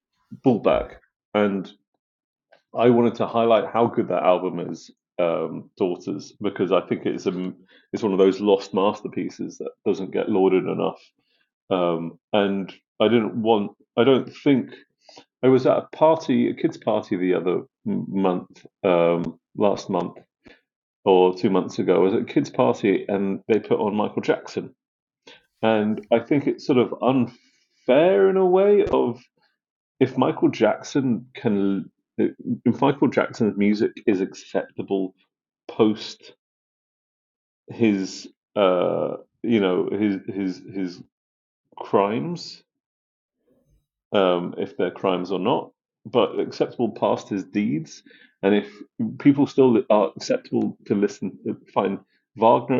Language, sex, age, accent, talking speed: English, male, 40-59, British, 135 wpm